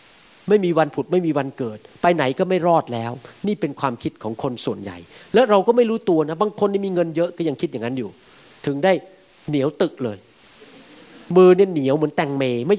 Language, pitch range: Thai, 140-205 Hz